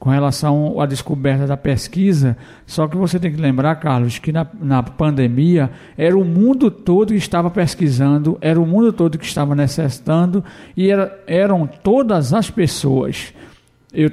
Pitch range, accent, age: 140-185 Hz, Brazilian, 60-79